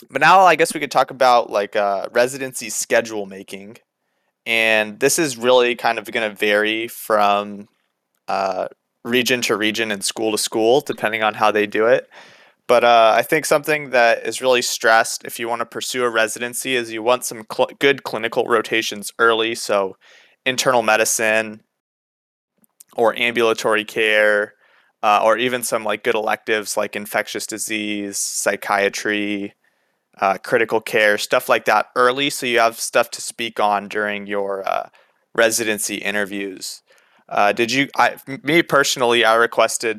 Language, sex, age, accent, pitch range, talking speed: English, male, 20-39, American, 105-120 Hz, 160 wpm